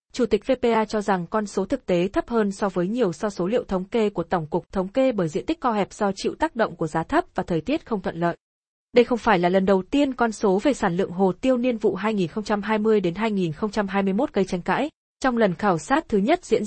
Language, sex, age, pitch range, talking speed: Vietnamese, female, 20-39, 190-235 Hz, 250 wpm